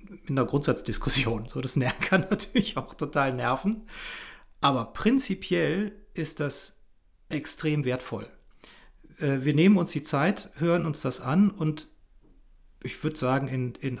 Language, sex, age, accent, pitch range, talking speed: German, male, 40-59, German, 140-180 Hz, 135 wpm